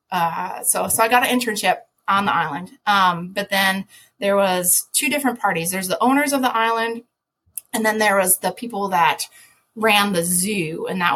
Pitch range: 170-225 Hz